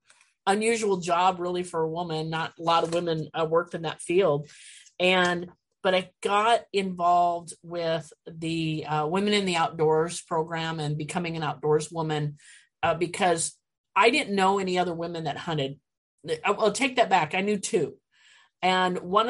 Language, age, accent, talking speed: English, 30-49, American, 165 wpm